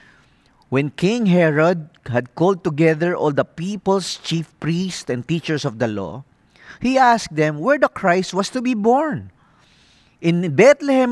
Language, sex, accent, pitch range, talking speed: English, male, Filipino, 135-185 Hz, 150 wpm